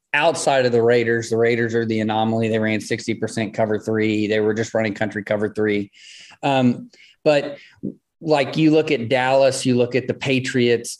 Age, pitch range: 30-49, 115-130 Hz